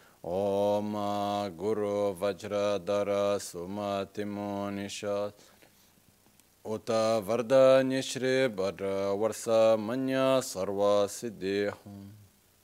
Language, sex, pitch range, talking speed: Italian, male, 100-110 Hz, 50 wpm